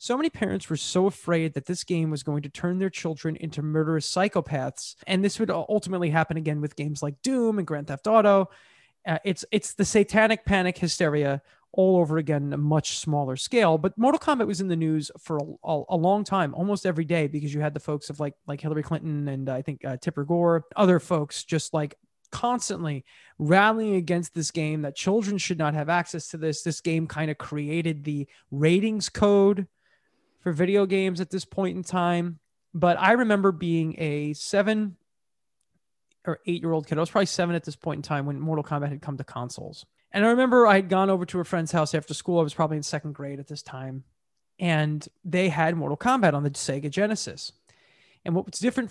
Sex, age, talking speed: male, 30-49, 210 wpm